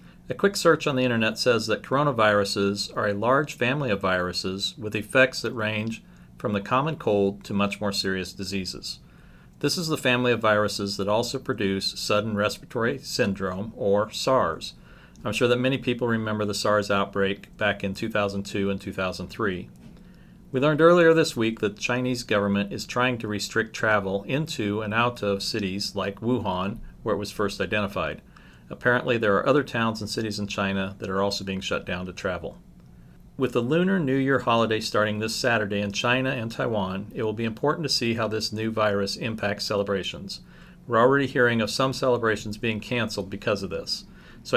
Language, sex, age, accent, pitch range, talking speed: English, male, 40-59, American, 100-125 Hz, 185 wpm